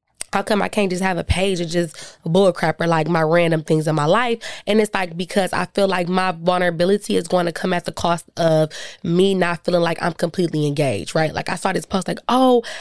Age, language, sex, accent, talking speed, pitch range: 20-39, English, female, American, 240 wpm, 165-200 Hz